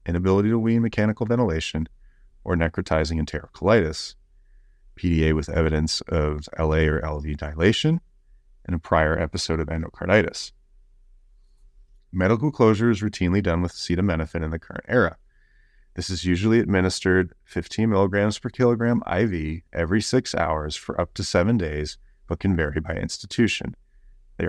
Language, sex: English, male